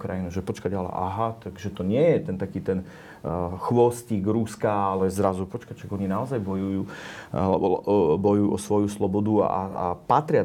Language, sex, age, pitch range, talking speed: Slovak, male, 30-49, 95-115 Hz, 155 wpm